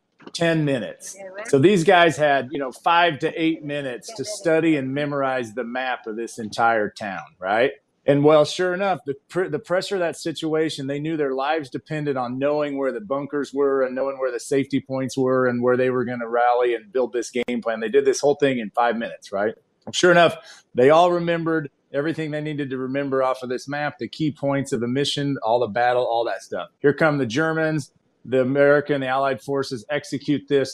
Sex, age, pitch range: male, 40-59, 125-150 Hz